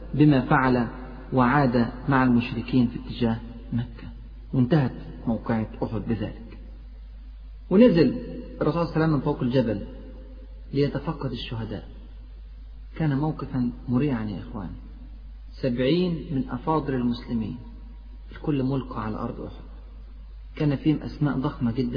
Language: Arabic